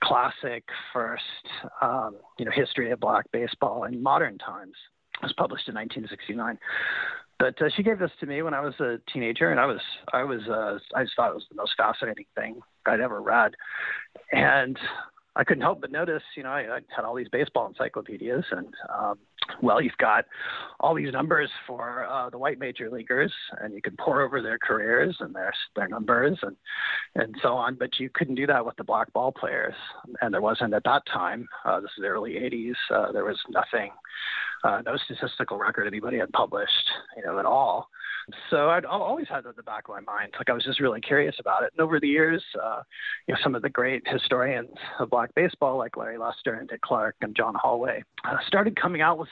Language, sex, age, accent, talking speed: English, male, 40-59, American, 210 wpm